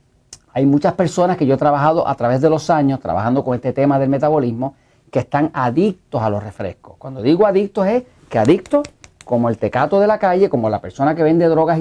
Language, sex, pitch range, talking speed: English, male, 125-185 Hz, 215 wpm